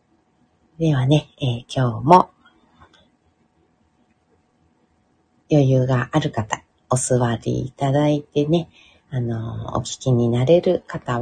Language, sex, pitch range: Japanese, female, 115-150 Hz